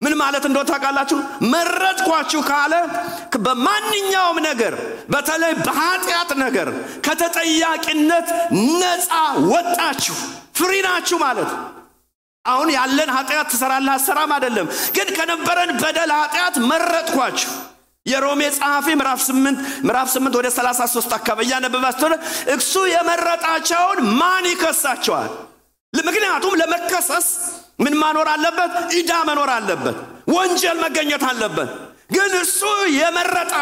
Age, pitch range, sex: 50-69, 290-355 Hz, male